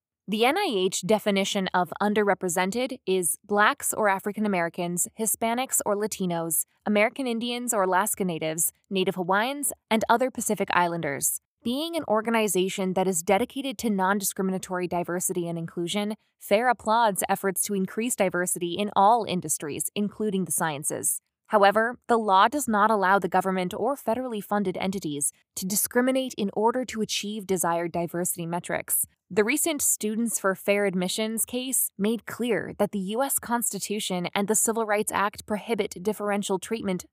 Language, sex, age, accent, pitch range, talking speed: English, female, 20-39, American, 185-220 Hz, 145 wpm